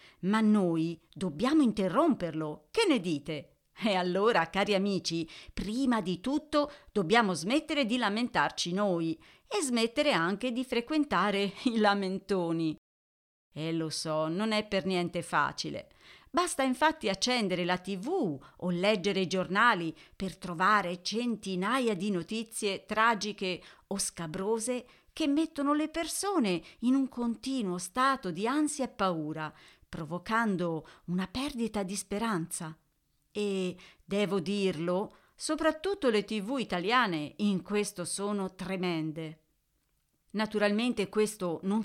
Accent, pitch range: native, 175-240 Hz